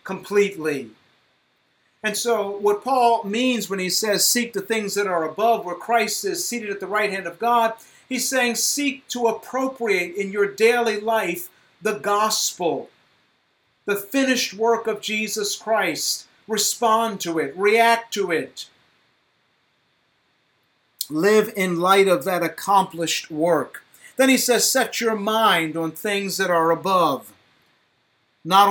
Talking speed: 140 wpm